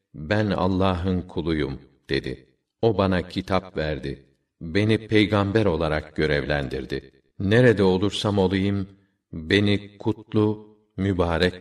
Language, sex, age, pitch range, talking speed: Turkish, male, 50-69, 90-105 Hz, 95 wpm